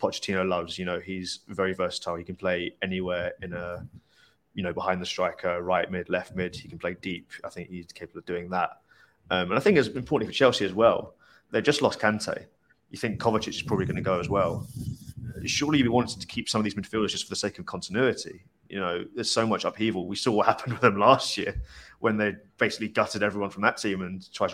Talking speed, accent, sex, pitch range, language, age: 235 wpm, British, male, 90-105 Hz, English, 20-39